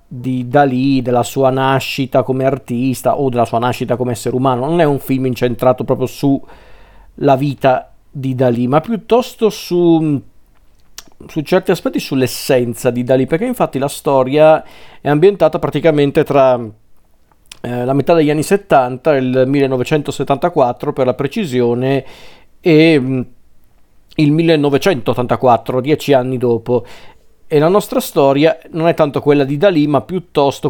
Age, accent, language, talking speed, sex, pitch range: 40-59, native, Italian, 140 wpm, male, 130-155 Hz